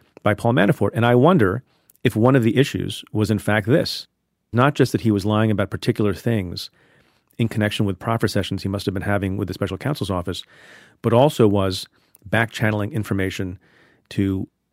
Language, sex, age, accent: English, male, 40-59, American